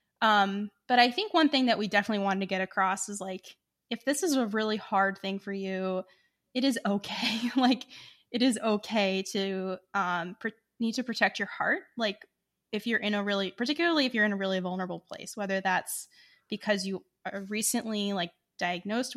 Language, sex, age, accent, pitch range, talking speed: English, female, 10-29, American, 190-225 Hz, 190 wpm